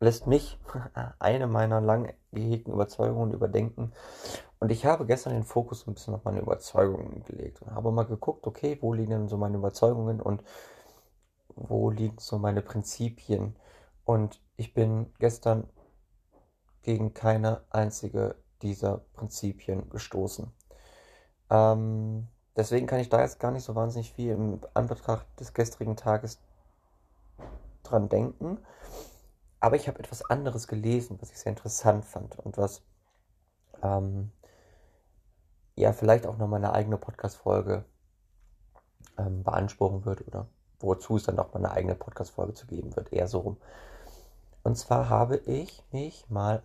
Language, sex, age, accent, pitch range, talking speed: German, male, 30-49, German, 100-115 Hz, 140 wpm